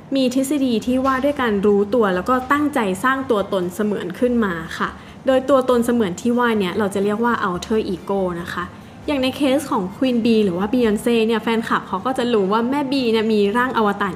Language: Thai